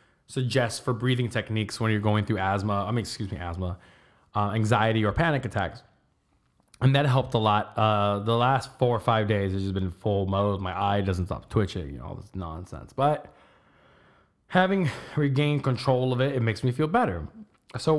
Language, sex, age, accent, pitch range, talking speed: English, male, 20-39, American, 100-125 Hz, 195 wpm